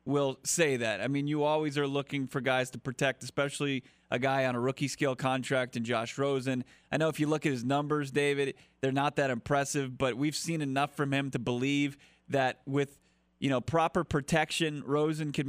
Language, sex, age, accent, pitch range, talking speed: English, male, 30-49, American, 135-160 Hz, 205 wpm